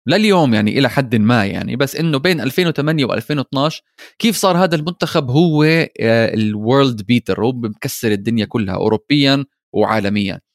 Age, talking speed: 20-39, 135 wpm